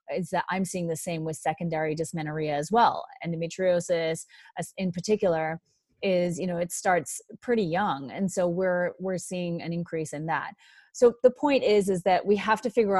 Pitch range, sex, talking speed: 170-205 Hz, female, 185 wpm